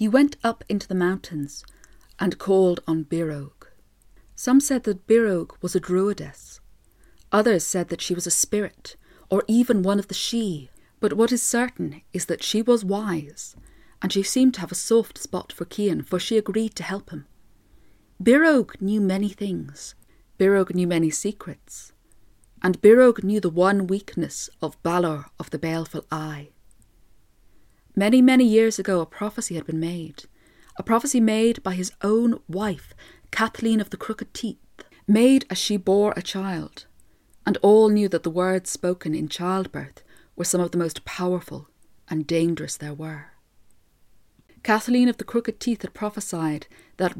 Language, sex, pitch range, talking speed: English, female, 170-220 Hz, 165 wpm